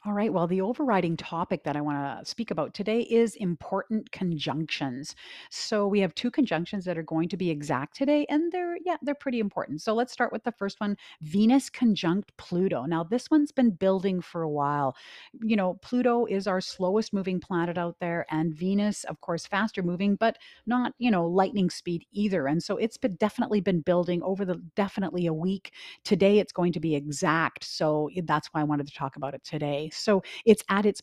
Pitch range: 155-210 Hz